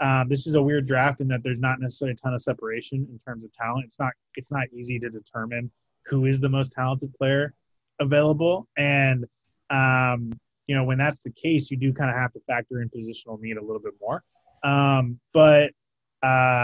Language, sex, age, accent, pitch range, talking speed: English, male, 20-39, American, 115-135 Hz, 210 wpm